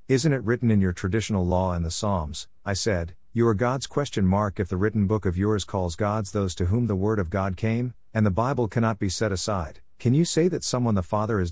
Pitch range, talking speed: 90-115 Hz, 250 wpm